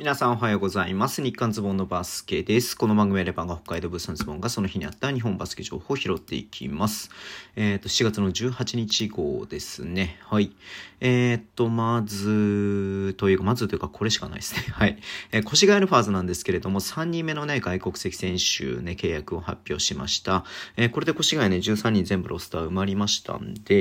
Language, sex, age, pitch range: Japanese, male, 40-59, 95-120 Hz